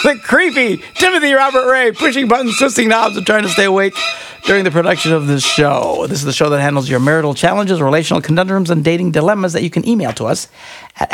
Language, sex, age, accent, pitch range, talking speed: English, male, 60-79, American, 135-195 Hz, 220 wpm